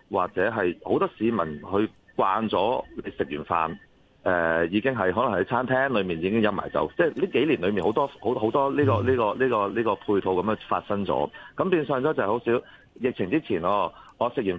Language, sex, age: Chinese, male, 30-49